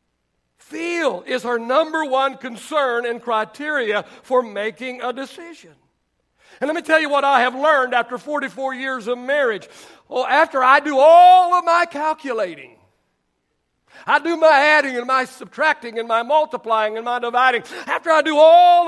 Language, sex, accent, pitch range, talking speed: English, male, American, 205-290 Hz, 160 wpm